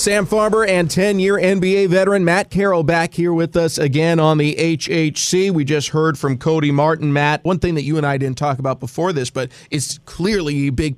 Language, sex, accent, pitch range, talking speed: English, male, American, 145-170 Hz, 215 wpm